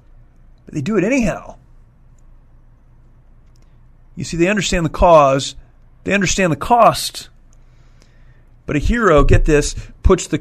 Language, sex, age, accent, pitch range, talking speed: English, male, 40-59, American, 120-155 Hz, 125 wpm